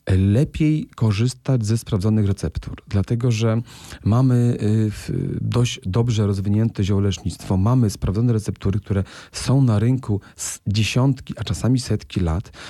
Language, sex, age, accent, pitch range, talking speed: Polish, male, 40-59, native, 105-135 Hz, 120 wpm